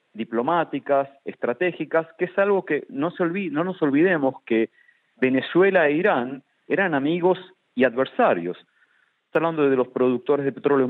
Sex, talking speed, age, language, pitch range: male, 150 wpm, 40-59, Spanish, 125-170 Hz